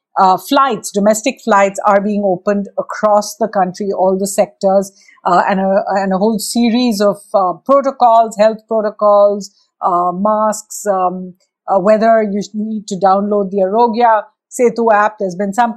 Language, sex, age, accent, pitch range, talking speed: English, female, 50-69, Indian, 195-230 Hz, 155 wpm